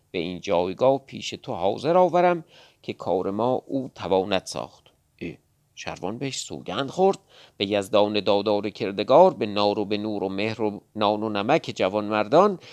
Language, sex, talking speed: Persian, male, 165 wpm